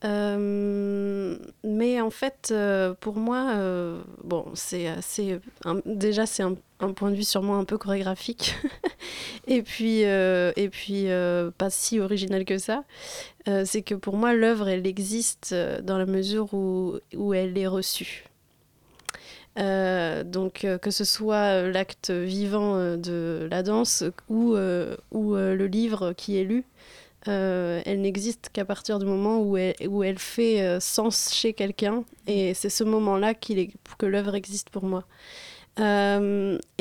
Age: 20-39